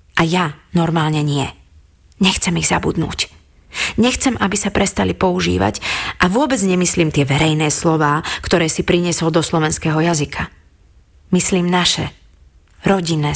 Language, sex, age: Slovak, female, 30-49